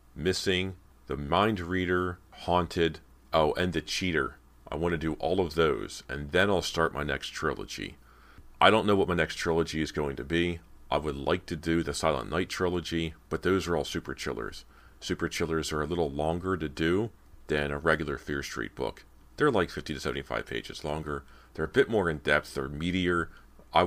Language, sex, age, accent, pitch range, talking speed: English, male, 40-59, American, 70-85 Hz, 200 wpm